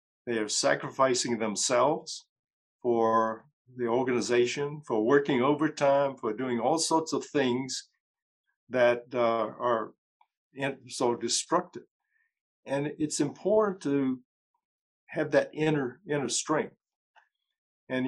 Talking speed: 105 wpm